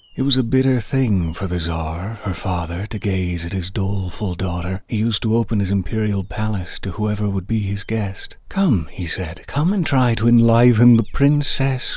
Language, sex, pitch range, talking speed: English, male, 95-120 Hz, 195 wpm